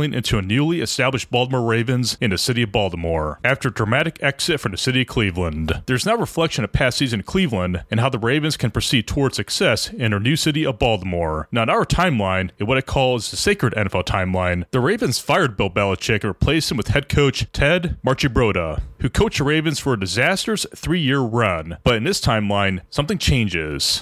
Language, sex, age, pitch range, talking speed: English, male, 30-49, 100-145 Hz, 205 wpm